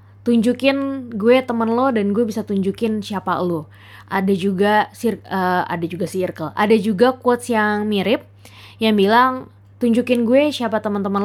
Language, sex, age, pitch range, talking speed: Indonesian, female, 20-39, 170-235 Hz, 145 wpm